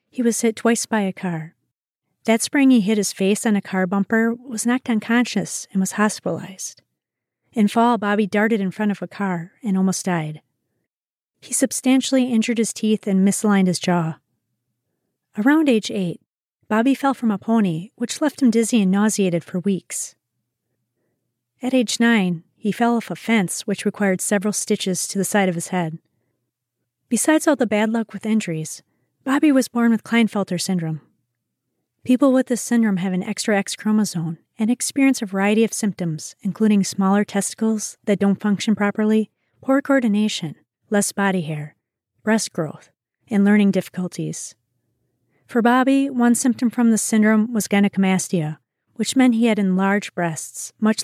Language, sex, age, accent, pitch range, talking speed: English, female, 40-59, American, 175-230 Hz, 165 wpm